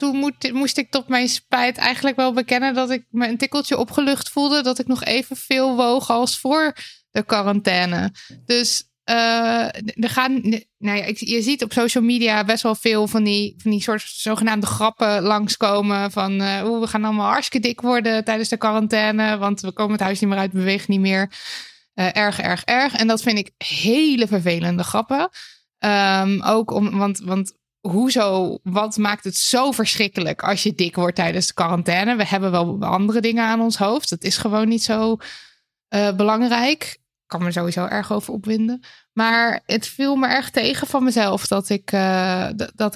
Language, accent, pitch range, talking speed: Dutch, Dutch, 200-245 Hz, 190 wpm